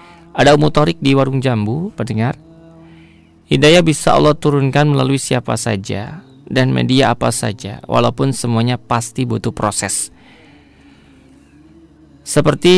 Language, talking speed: Indonesian, 110 wpm